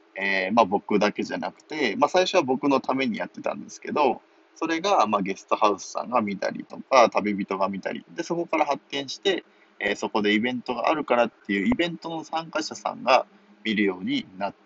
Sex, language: male, Japanese